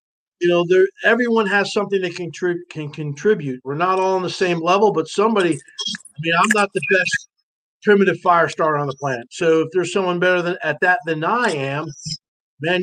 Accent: American